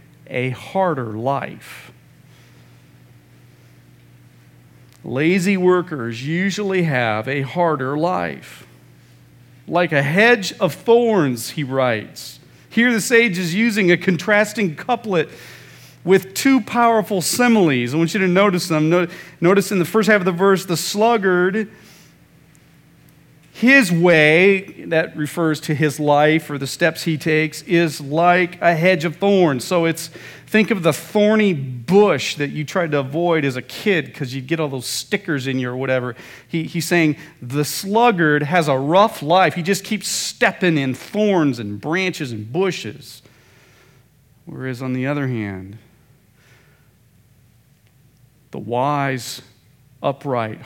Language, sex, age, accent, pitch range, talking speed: English, male, 40-59, American, 130-185 Hz, 135 wpm